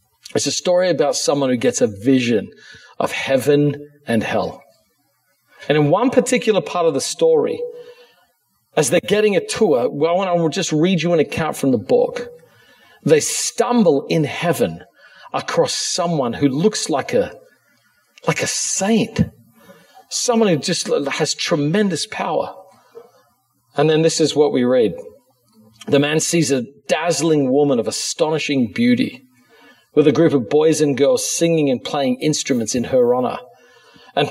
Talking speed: 150 wpm